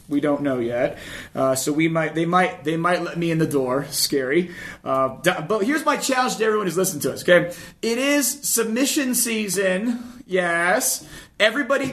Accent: American